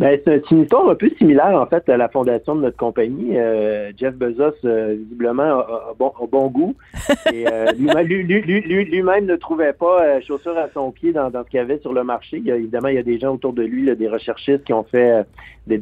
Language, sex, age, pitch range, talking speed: French, male, 50-69, 115-150 Hz, 260 wpm